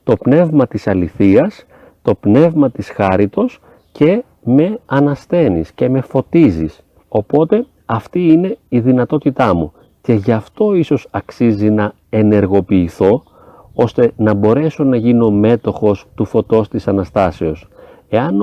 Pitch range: 100-160 Hz